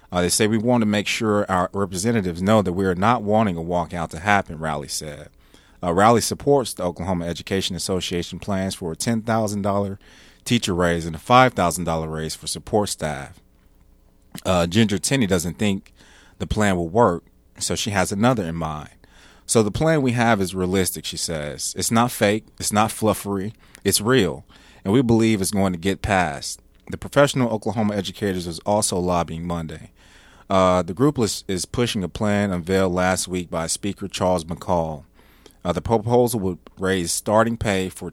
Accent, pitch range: American, 85-105 Hz